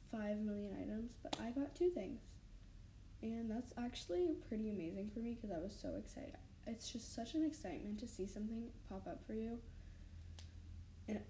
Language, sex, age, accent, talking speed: English, female, 10-29, American, 175 wpm